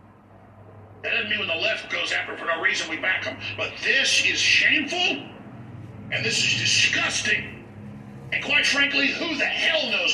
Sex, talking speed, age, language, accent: male, 180 wpm, 50-69, English, American